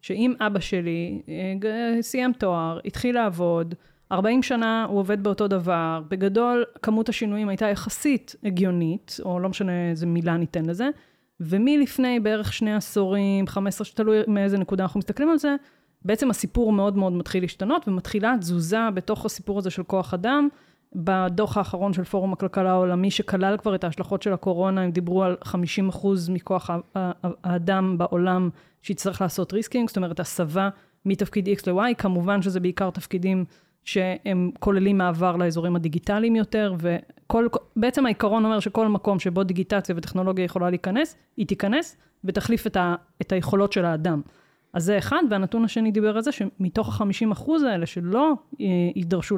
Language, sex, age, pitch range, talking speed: Hebrew, female, 20-39, 185-220 Hz, 145 wpm